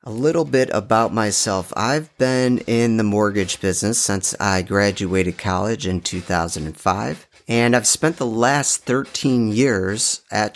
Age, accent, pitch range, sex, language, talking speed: 30-49, American, 95-120 Hz, male, English, 140 wpm